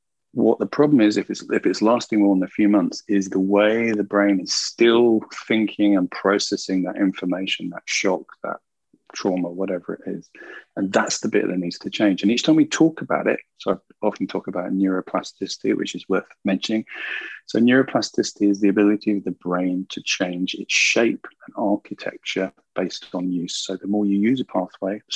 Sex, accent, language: male, British, English